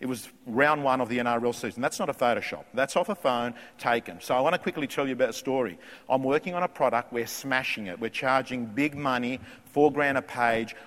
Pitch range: 110-130 Hz